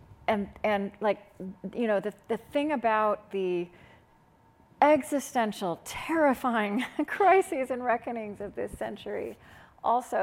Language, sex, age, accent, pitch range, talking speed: English, female, 40-59, American, 195-245 Hz, 110 wpm